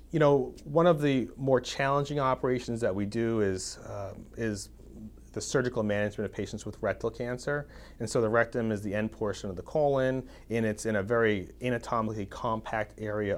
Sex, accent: male, American